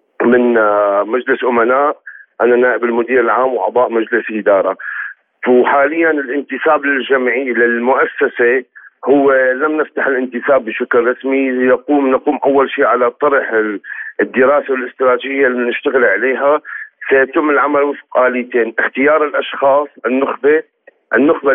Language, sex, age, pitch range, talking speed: Arabic, male, 40-59, 125-150 Hz, 110 wpm